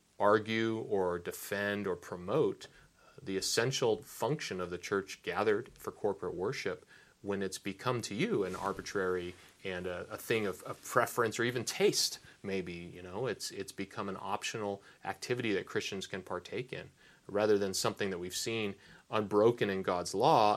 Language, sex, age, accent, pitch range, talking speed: English, male, 30-49, American, 95-105 Hz, 165 wpm